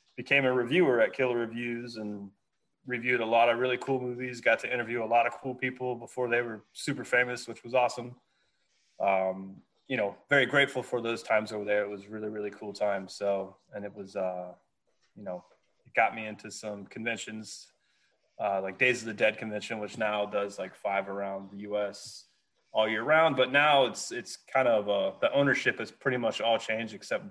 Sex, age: male, 20-39